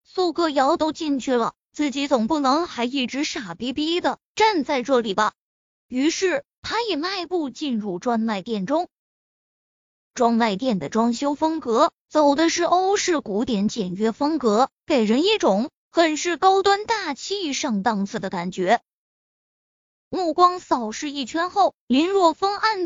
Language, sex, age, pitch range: Chinese, female, 20-39, 245-360 Hz